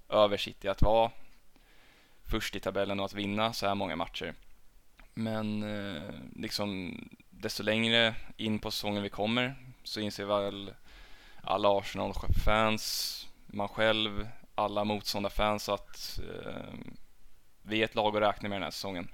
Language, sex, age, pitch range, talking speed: Swedish, male, 10-29, 100-110 Hz, 135 wpm